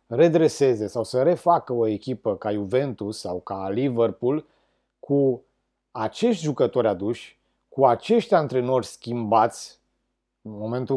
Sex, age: male, 30-49